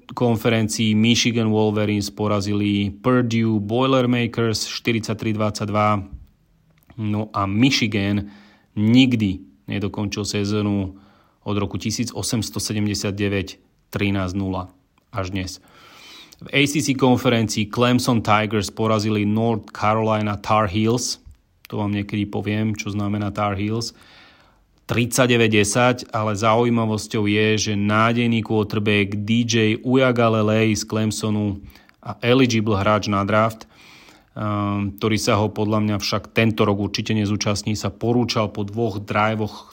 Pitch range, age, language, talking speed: 100-115 Hz, 30-49, Slovak, 105 wpm